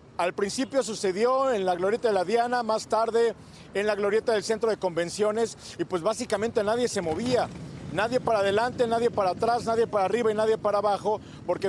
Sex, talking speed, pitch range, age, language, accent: male, 195 wpm, 185-230 Hz, 50-69, Spanish, Mexican